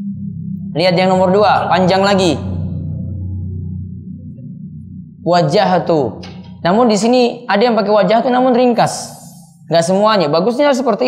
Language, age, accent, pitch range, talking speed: Indonesian, 20-39, native, 150-175 Hz, 115 wpm